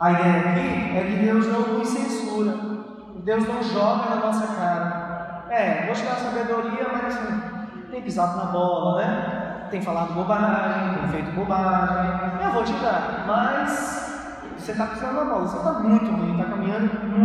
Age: 20-39